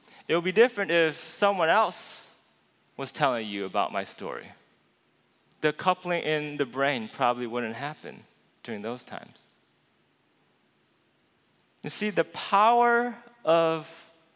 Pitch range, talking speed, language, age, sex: 120-165 Hz, 120 wpm, English, 30-49, male